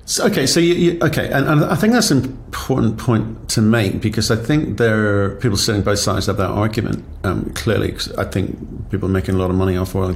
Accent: British